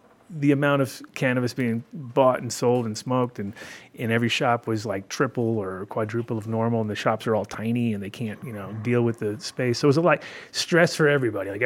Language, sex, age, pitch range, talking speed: English, male, 30-49, 105-125 Hz, 230 wpm